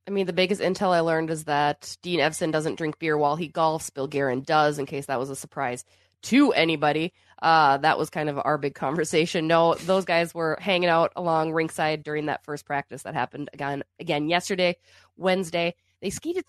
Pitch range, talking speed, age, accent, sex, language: 150-180 Hz, 205 wpm, 20-39, American, female, English